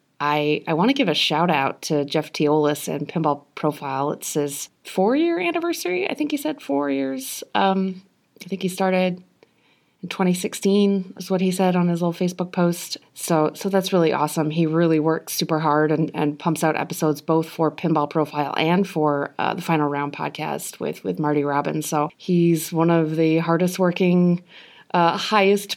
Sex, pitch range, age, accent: female, 150-185 Hz, 20-39, American